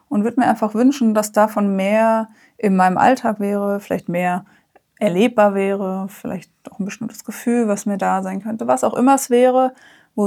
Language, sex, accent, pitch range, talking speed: German, female, German, 200-240 Hz, 195 wpm